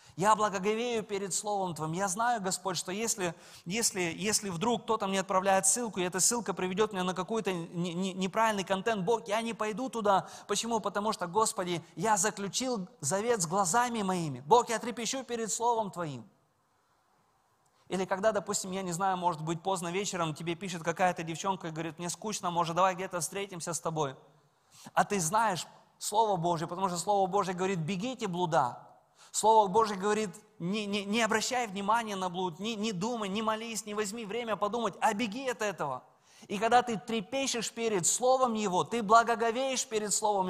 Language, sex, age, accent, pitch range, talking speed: Russian, male, 20-39, native, 145-215 Hz, 175 wpm